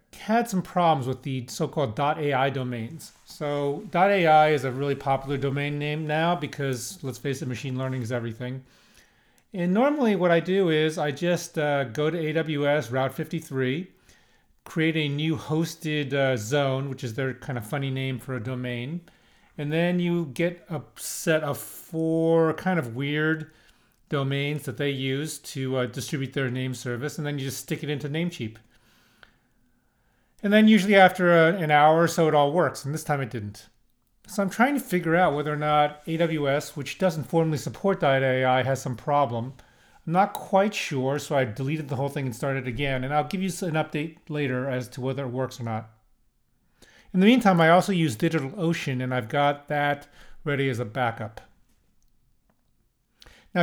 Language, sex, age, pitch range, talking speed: English, male, 40-59, 130-165 Hz, 180 wpm